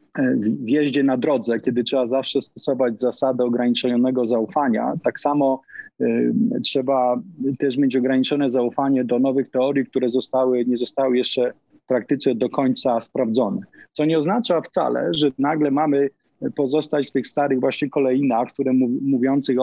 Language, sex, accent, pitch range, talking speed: Polish, male, native, 125-140 Hz, 145 wpm